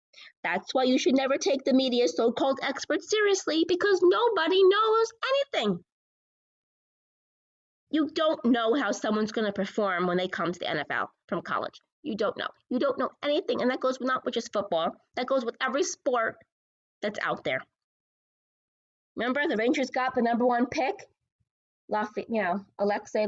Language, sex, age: English, female, 20-39